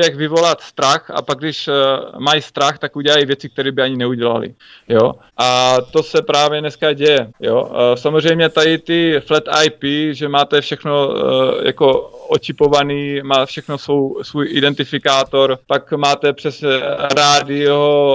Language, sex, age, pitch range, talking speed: Czech, male, 20-39, 130-145 Hz, 140 wpm